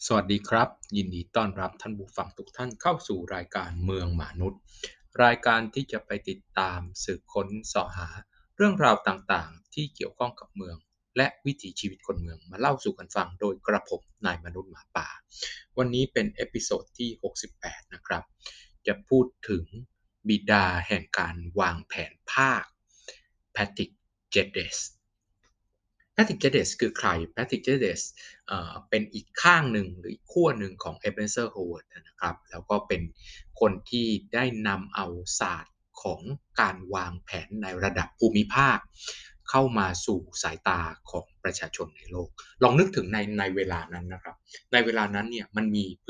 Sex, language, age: male, Thai, 20-39